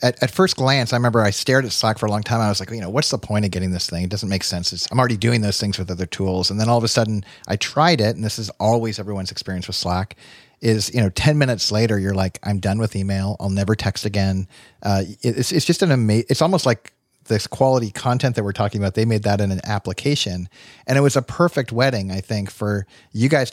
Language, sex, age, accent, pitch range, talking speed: English, male, 40-59, American, 100-125 Hz, 275 wpm